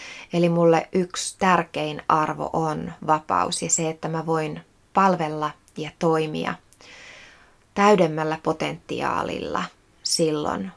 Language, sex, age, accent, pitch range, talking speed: Finnish, female, 20-39, native, 105-175 Hz, 100 wpm